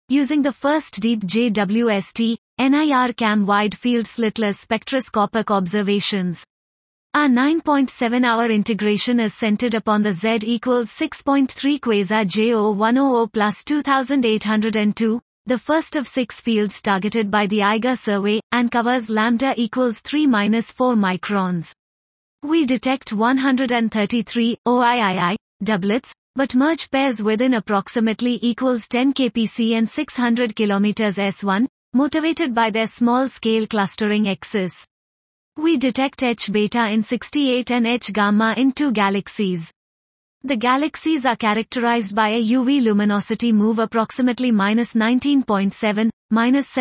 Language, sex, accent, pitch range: English, female, Indian, 210-255 Hz